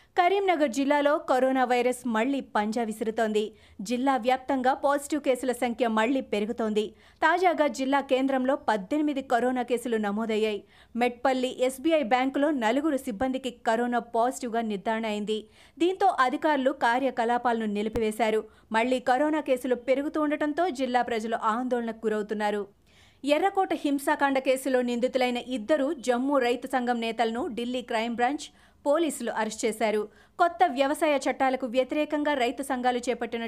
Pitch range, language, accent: 230-285 Hz, Telugu, native